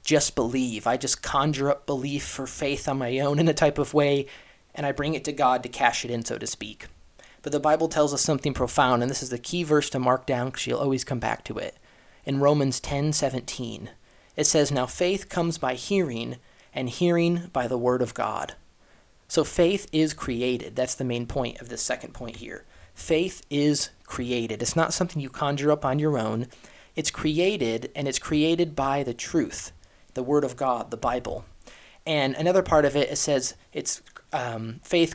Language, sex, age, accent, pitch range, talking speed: English, male, 20-39, American, 125-155 Hz, 205 wpm